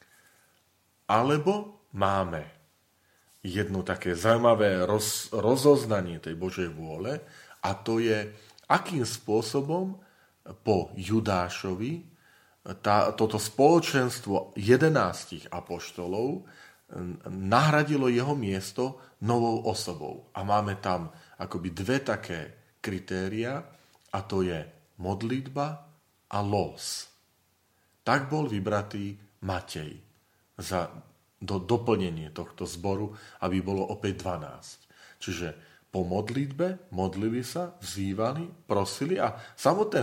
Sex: male